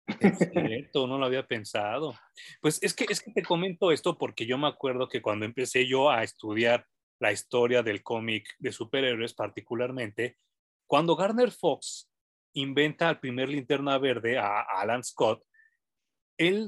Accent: Mexican